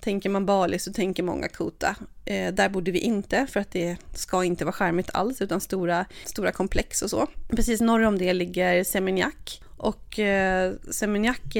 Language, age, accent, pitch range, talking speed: Swedish, 30-49, native, 180-210 Hz, 180 wpm